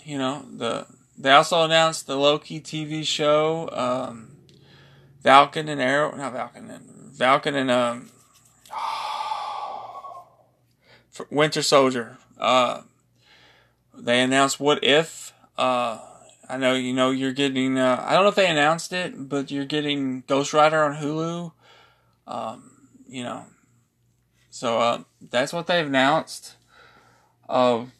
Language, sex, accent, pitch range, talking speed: English, male, American, 125-155 Hz, 130 wpm